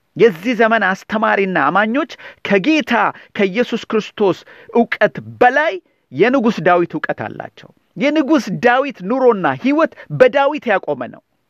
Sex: male